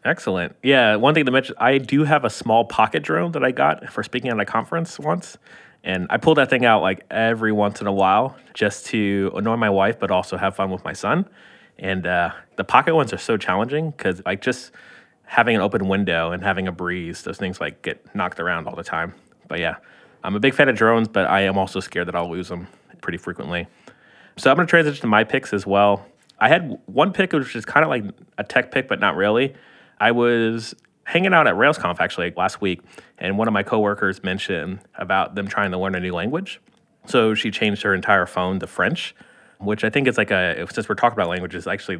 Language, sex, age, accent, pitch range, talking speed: English, male, 20-39, American, 95-120 Hz, 230 wpm